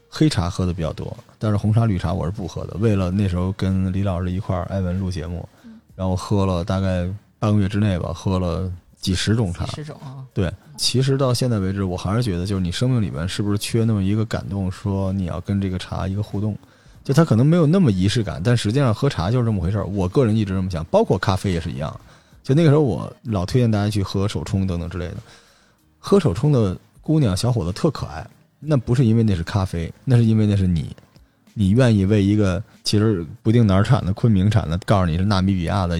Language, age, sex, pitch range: Chinese, 20-39, male, 95-120 Hz